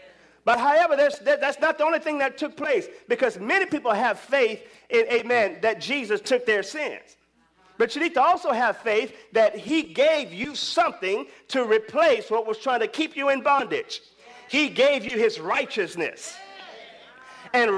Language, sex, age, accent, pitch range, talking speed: English, male, 40-59, American, 230-315 Hz, 170 wpm